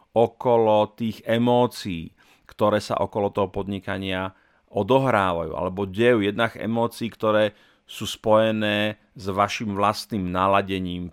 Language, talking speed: Slovak, 110 wpm